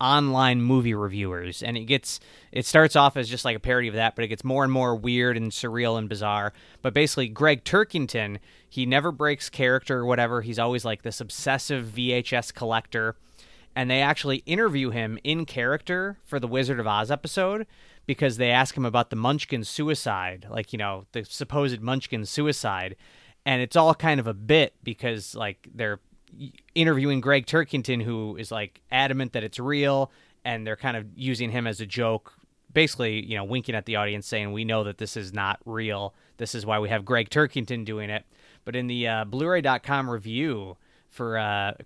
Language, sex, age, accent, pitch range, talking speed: English, male, 20-39, American, 110-140 Hz, 190 wpm